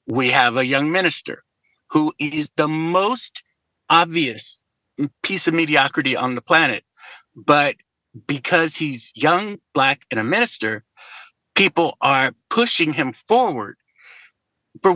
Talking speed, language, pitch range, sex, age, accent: 120 wpm, English, 135-175 Hz, male, 50-69, American